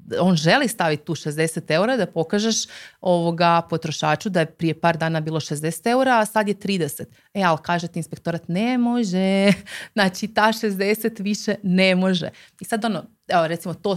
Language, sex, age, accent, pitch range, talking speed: Croatian, female, 30-49, native, 165-205 Hz, 175 wpm